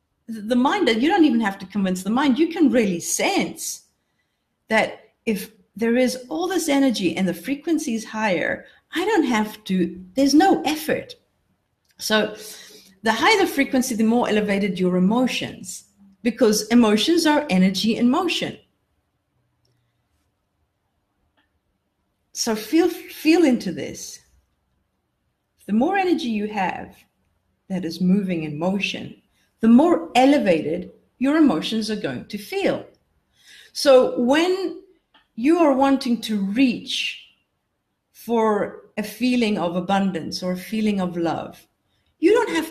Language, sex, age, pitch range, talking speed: English, female, 50-69, 185-275 Hz, 130 wpm